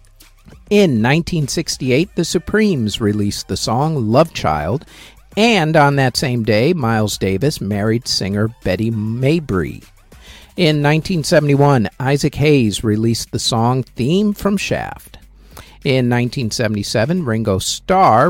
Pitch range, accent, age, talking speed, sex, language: 110-160 Hz, American, 50-69, 110 wpm, male, English